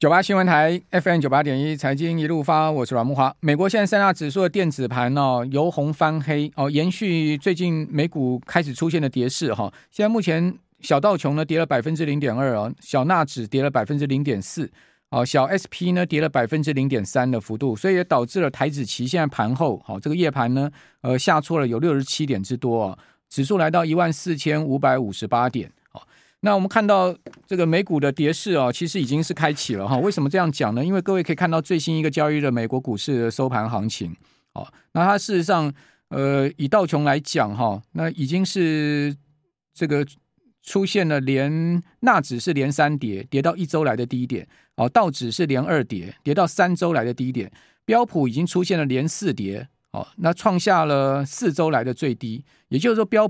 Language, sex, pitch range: Chinese, male, 130-175 Hz